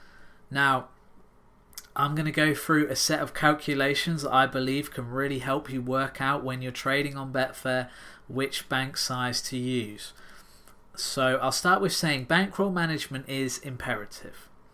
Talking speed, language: 155 wpm, English